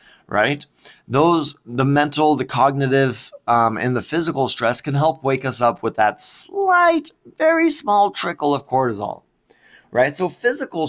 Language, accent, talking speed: English, American, 150 wpm